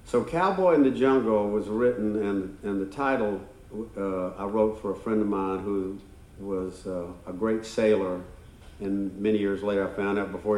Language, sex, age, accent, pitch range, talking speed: English, male, 50-69, American, 95-110 Hz, 185 wpm